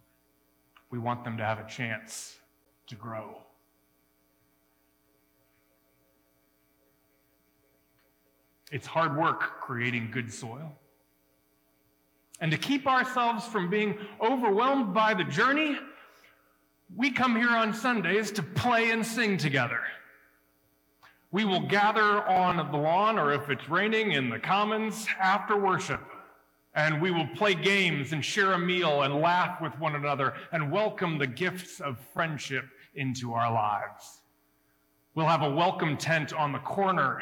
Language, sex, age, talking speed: English, male, 40-59, 130 wpm